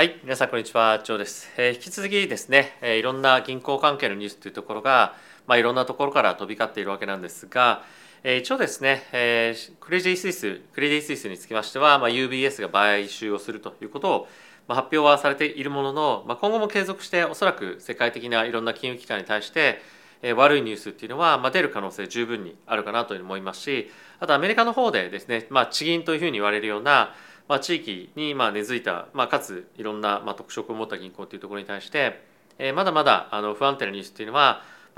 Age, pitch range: 40-59, 110-150 Hz